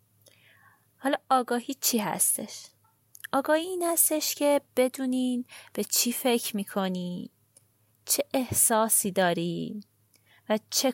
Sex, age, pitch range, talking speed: female, 20-39, 185-275 Hz, 100 wpm